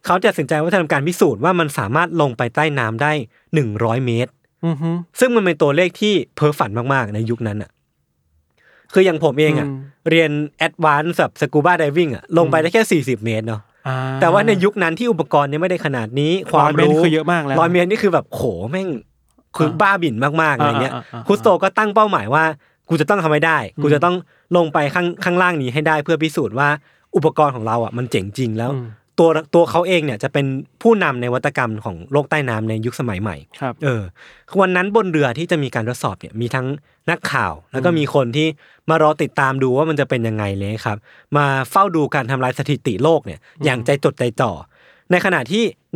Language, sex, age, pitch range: Thai, male, 20-39, 130-175 Hz